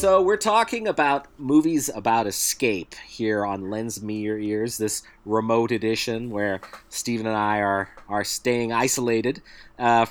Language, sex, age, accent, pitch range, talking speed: English, male, 30-49, American, 105-130 Hz, 150 wpm